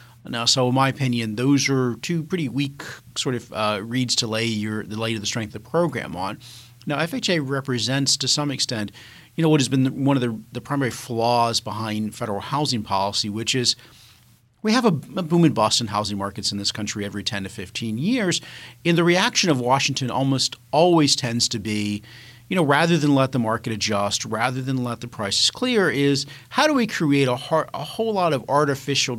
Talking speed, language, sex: 215 wpm, English, male